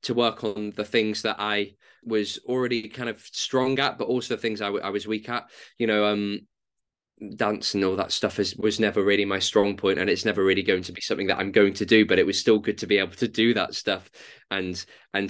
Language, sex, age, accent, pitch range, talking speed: English, male, 20-39, British, 100-115 Hz, 255 wpm